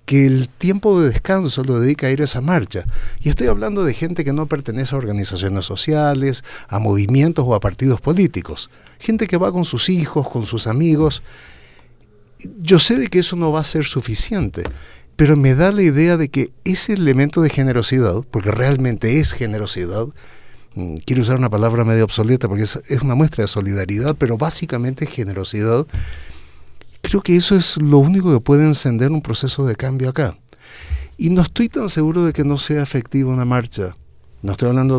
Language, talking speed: Spanish, 185 wpm